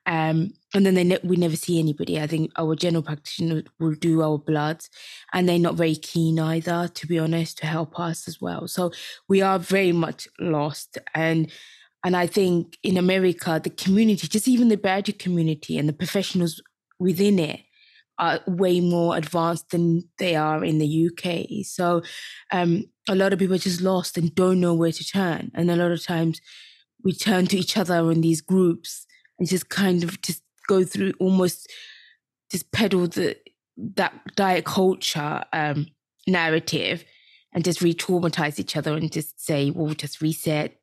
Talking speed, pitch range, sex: 180 wpm, 160-190 Hz, female